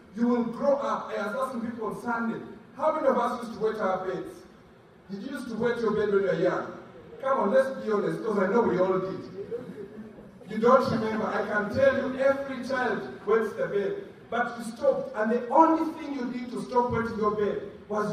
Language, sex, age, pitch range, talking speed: English, male, 30-49, 215-270 Hz, 225 wpm